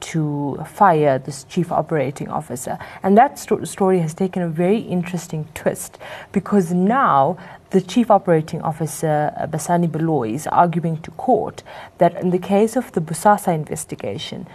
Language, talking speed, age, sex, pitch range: English, 150 wpm, 30-49, female, 155-185 Hz